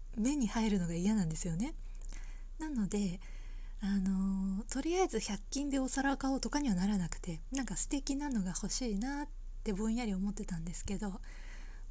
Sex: female